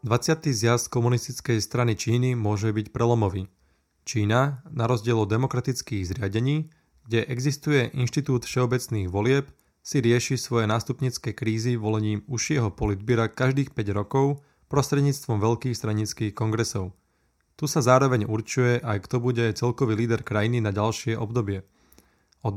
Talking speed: 125 wpm